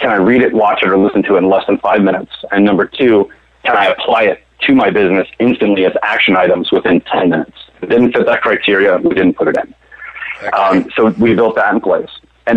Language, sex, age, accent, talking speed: English, male, 30-49, American, 240 wpm